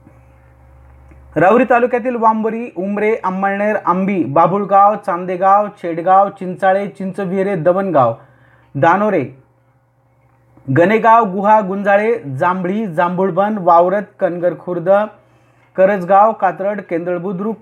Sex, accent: male, native